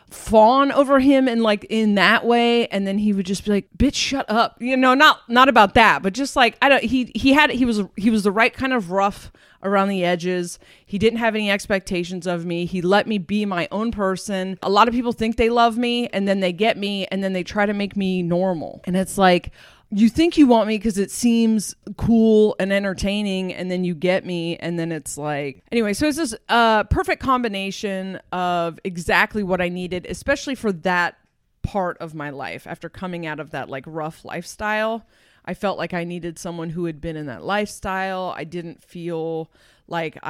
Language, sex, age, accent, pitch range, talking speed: English, female, 30-49, American, 175-210 Hz, 215 wpm